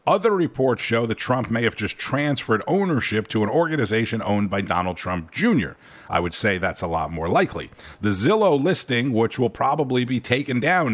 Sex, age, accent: male, 50-69, American